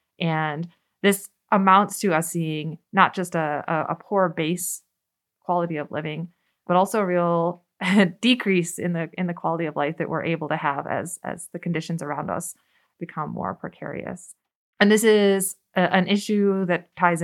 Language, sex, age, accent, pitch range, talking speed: English, female, 20-39, American, 155-185 Hz, 175 wpm